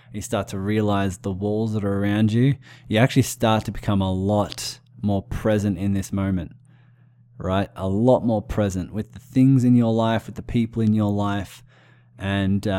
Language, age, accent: English, 20-39, Australian